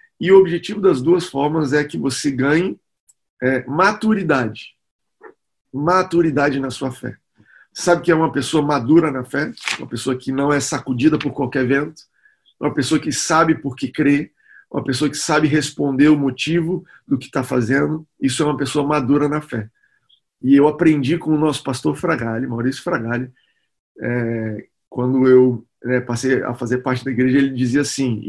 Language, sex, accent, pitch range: Portuguese, male, Brazilian, 130-160 Hz